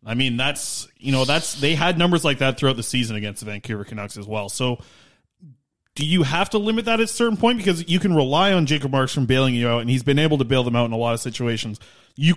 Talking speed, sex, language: 270 wpm, male, English